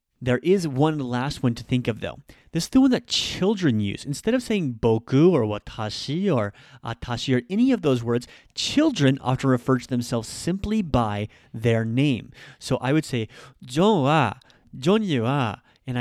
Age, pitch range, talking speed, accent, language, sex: 30-49, 120-155 Hz, 160 wpm, American, English, male